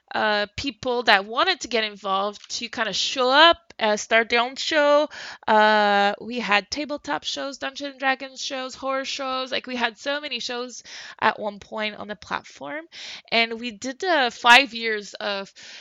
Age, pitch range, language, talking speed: 20-39, 210-270 Hz, English, 180 wpm